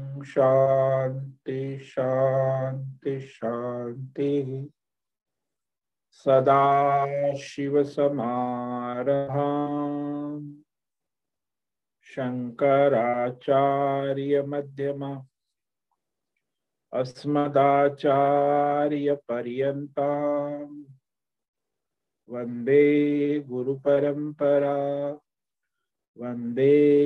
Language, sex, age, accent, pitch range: Hindi, male, 50-69, native, 125-145 Hz